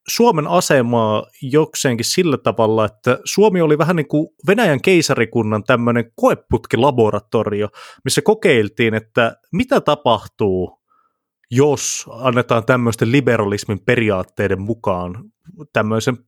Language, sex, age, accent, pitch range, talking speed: Finnish, male, 30-49, native, 110-145 Hz, 100 wpm